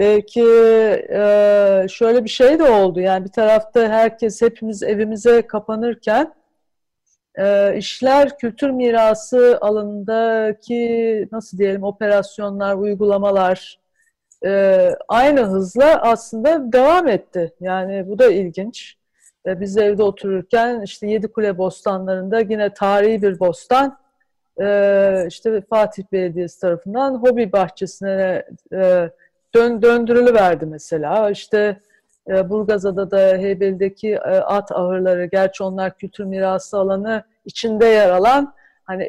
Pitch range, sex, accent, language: 190-230 Hz, female, native, Turkish